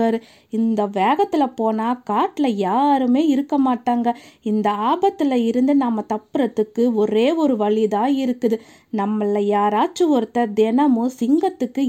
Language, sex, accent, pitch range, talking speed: Tamil, female, native, 230-320 Hz, 105 wpm